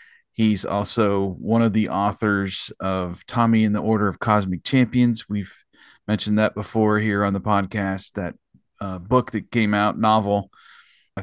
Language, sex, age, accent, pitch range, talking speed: English, male, 40-59, American, 100-115 Hz, 160 wpm